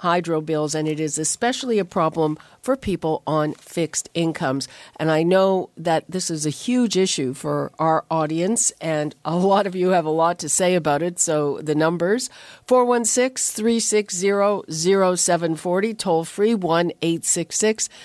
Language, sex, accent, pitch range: English, female, American, 160-210 Hz